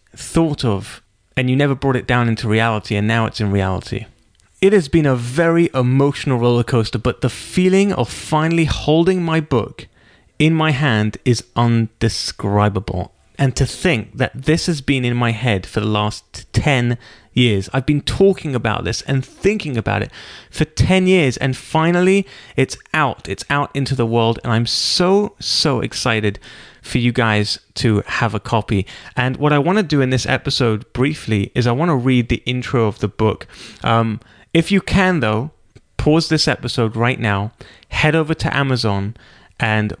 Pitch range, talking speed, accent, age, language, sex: 110-135 Hz, 180 wpm, British, 30-49, English, male